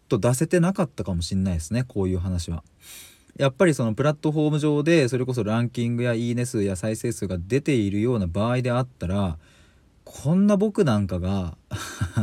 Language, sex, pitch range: Japanese, male, 95-130 Hz